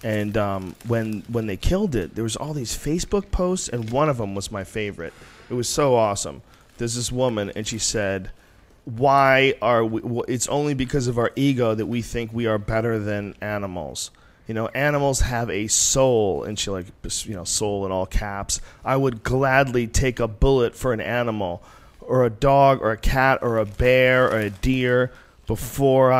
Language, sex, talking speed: English, male, 195 wpm